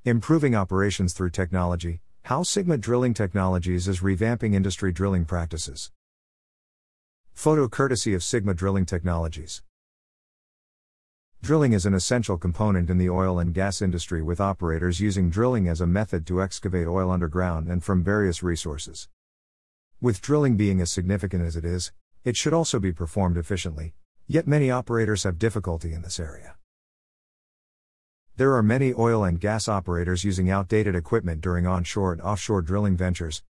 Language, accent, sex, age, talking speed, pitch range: English, American, male, 50-69, 150 wpm, 85-110 Hz